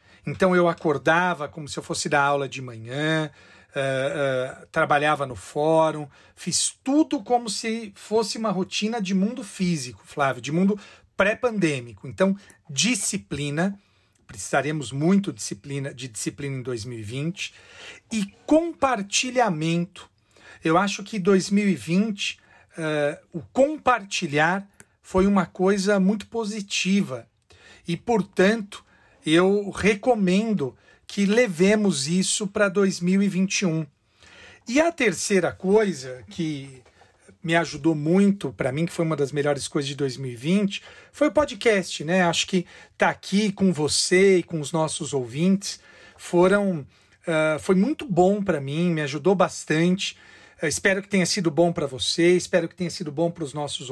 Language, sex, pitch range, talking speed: Portuguese, male, 145-200 Hz, 130 wpm